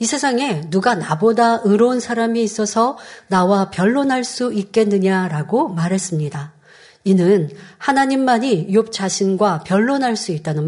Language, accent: Korean, native